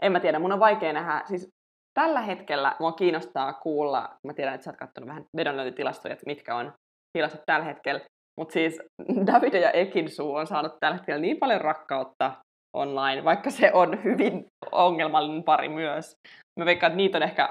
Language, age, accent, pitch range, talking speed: Finnish, 20-39, native, 155-200 Hz, 180 wpm